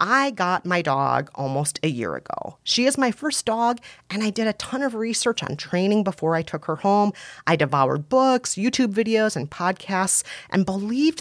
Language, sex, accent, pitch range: English, female, American, 150-215 Hz